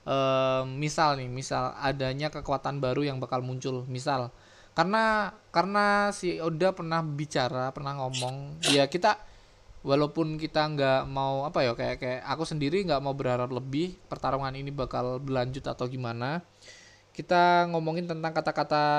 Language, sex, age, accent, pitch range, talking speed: Indonesian, male, 20-39, native, 130-155 Hz, 140 wpm